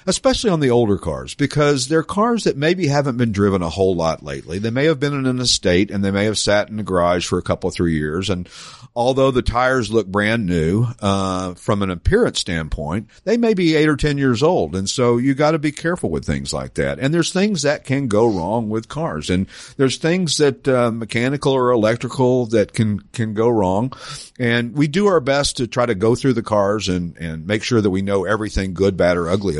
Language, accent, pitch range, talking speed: English, American, 100-150 Hz, 230 wpm